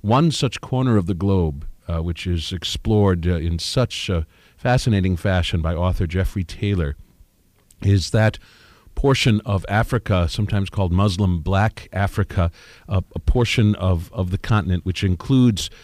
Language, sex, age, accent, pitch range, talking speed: English, male, 50-69, American, 90-105 Hz, 150 wpm